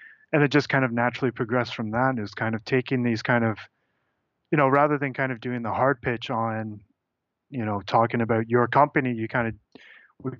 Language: English